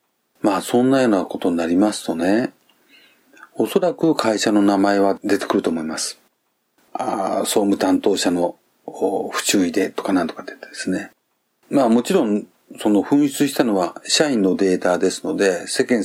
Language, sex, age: Japanese, male, 40-59